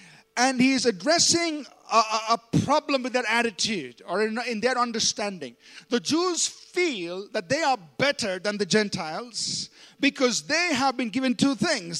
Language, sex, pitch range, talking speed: English, male, 210-275 Hz, 155 wpm